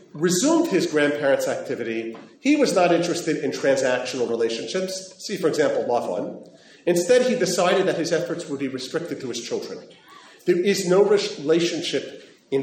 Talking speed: 150 wpm